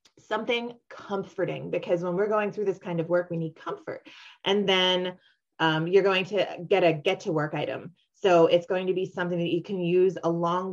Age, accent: 20-39, American